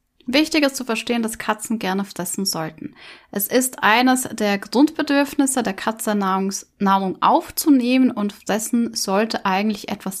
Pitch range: 210-260 Hz